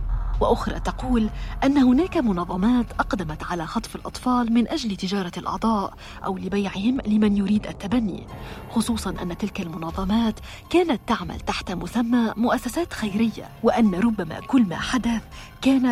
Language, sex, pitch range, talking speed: Arabic, female, 180-245 Hz, 130 wpm